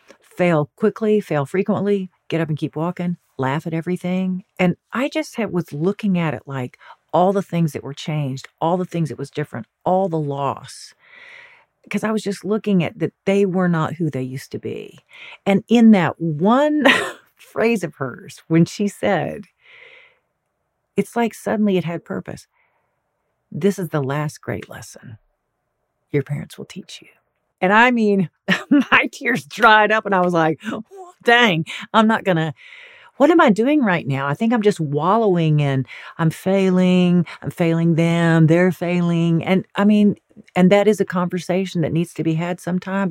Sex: female